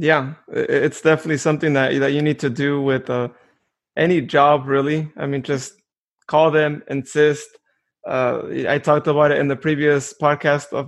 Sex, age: male, 20-39